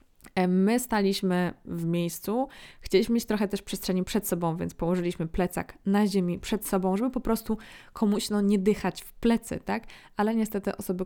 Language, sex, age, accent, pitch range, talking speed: Polish, female, 20-39, native, 170-205 Hz, 165 wpm